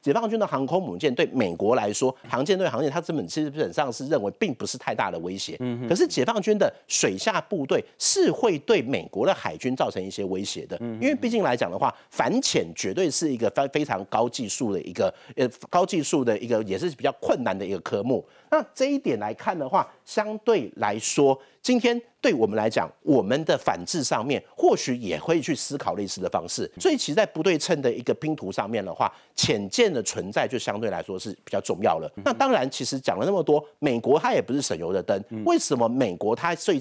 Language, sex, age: Chinese, male, 50-69